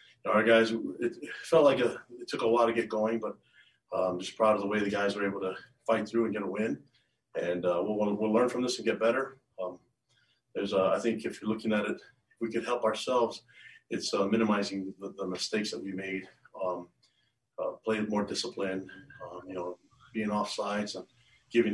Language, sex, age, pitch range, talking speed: English, male, 40-59, 95-115 Hz, 215 wpm